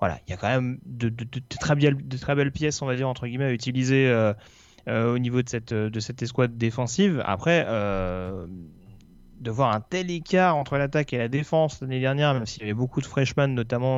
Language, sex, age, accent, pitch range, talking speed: French, male, 30-49, French, 115-145 Hz, 235 wpm